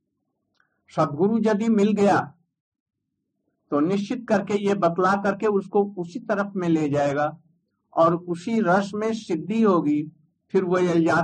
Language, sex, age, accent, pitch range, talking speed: Hindi, male, 60-79, native, 155-205 Hz, 135 wpm